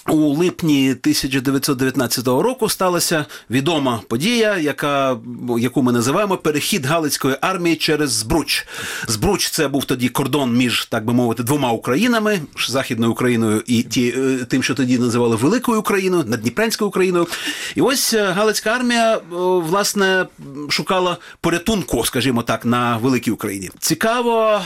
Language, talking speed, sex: Ukrainian, 130 wpm, male